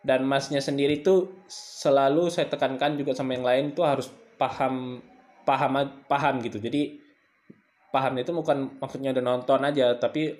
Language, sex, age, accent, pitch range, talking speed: Indonesian, male, 20-39, native, 120-195 Hz, 150 wpm